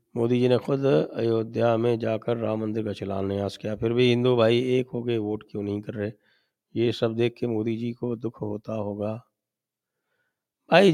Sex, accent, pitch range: male, Indian, 115-165 Hz